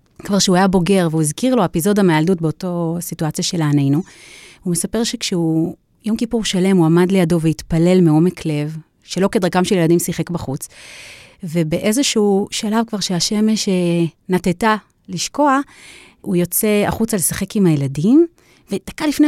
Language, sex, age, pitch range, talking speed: Hebrew, female, 30-49, 165-225 Hz, 140 wpm